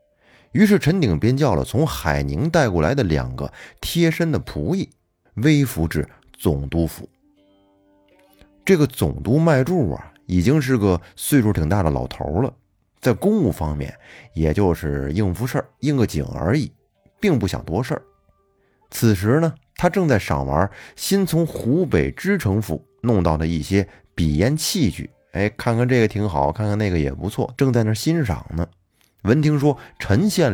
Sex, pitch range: male, 85-140 Hz